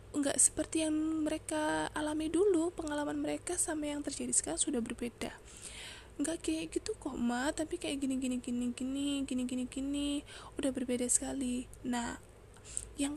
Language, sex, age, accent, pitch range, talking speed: Indonesian, female, 20-39, native, 250-305 Hz, 155 wpm